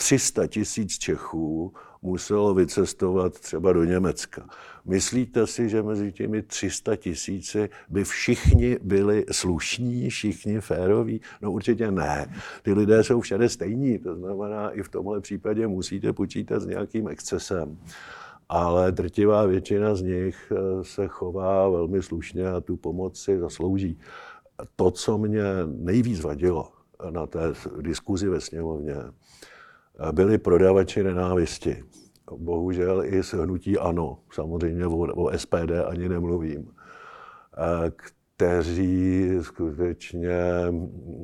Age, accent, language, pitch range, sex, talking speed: 60-79, native, Czech, 85-100 Hz, male, 115 wpm